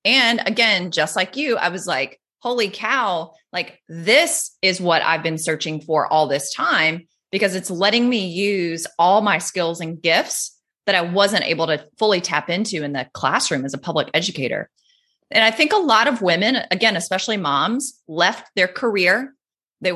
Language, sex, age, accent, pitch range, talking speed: English, female, 20-39, American, 170-225 Hz, 180 wpm